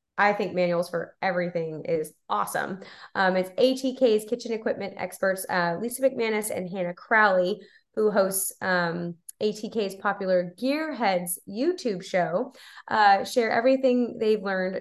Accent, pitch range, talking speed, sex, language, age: American, 180-220 Hz, 130 wpm, female, English, 20-39